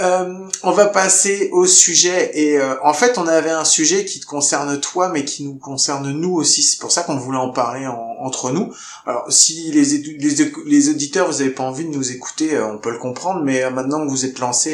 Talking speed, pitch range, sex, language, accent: 250 wpm, 130-175 Hz, male, French, French